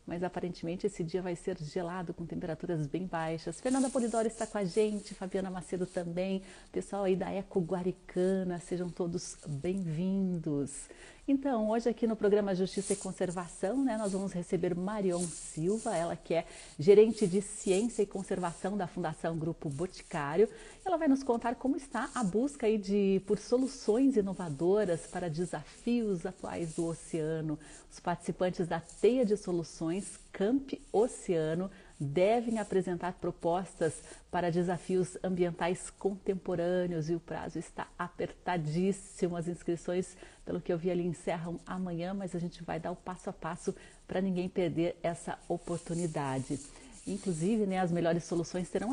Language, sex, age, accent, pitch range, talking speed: Portuguese, female, 40-59, Brazilian, 170-200 Hz, 150 wpm